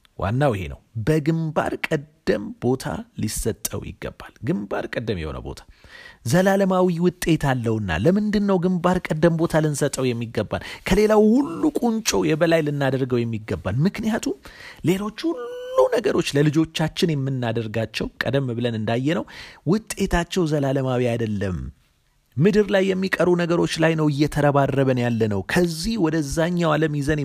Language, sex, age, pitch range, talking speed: Amharic, male, 30-49, 120-170 Hz, 110 wpm